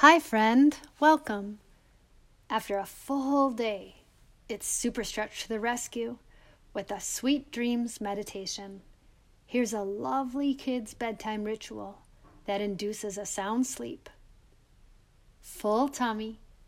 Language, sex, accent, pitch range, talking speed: English, female, American, 205-255 Hz, 110 wpm